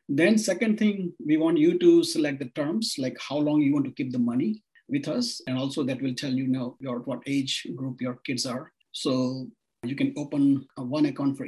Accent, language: Indian, English